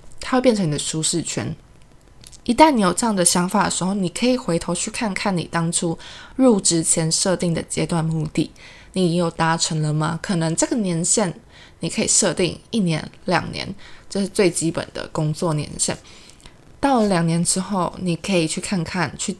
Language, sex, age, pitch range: Chinese, female, 20-39, 160-200 Hz